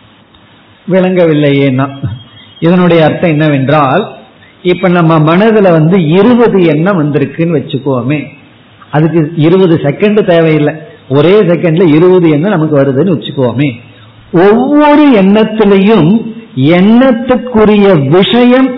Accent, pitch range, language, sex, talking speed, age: native, 145-205 Hz, Tamil, male, 85 wpm, 50-69